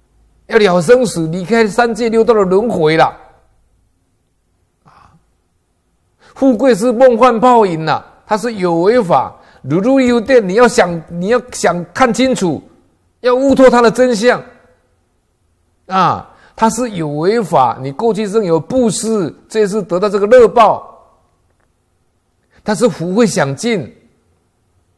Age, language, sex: 50-69, Chinese, male